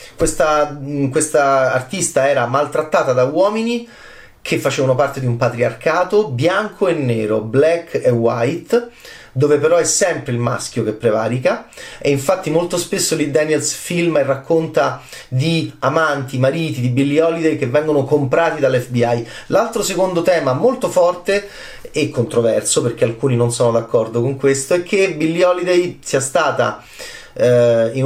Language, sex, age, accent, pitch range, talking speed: Italian, male, 30-49, native, 125-165 Hz, 145 wpm